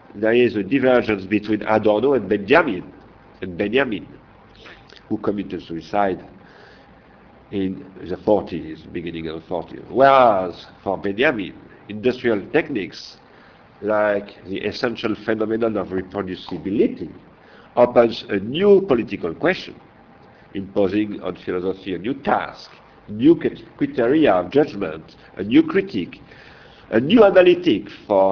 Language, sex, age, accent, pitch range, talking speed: French, male, 50-69, French, 95-125 Hz, 110 wpm